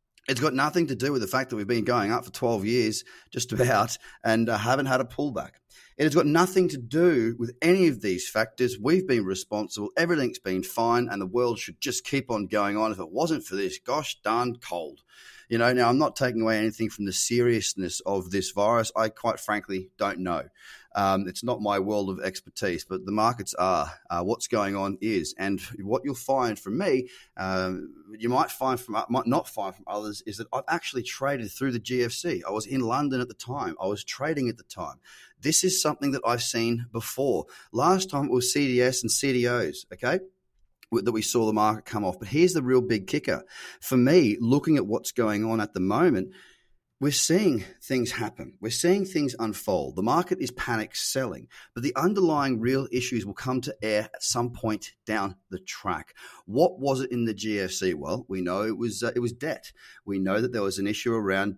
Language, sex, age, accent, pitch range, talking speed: English, male, 30-49, Australian, 105-130 Hz, 210 wpm